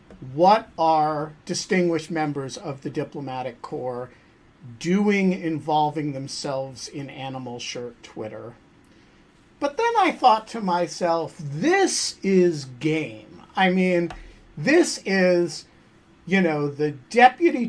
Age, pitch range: 50-69, 160-215 Hz